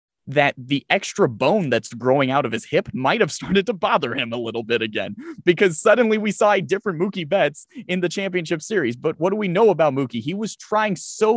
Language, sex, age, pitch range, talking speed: English, male, 30-49, 140-195 Hz, 225 wpm